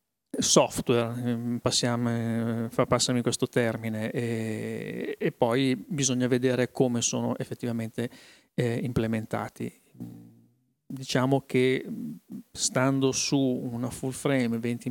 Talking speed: 95 wpm